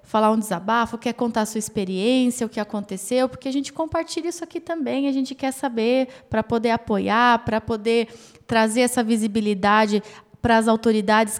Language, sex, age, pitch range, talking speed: Portuguese, female, 20-39, 220-260 Hz, 175 wpm